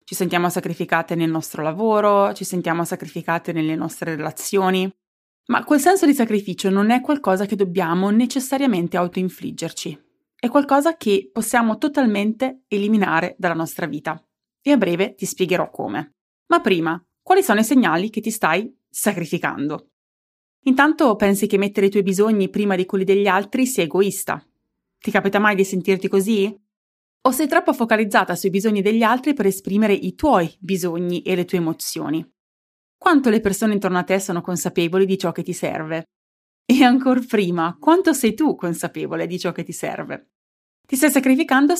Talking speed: 165 wpm